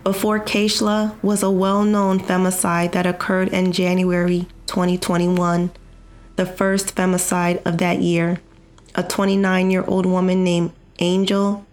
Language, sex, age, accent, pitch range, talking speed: English, female, 20-39, American, 180-205 Hz, 115 wpm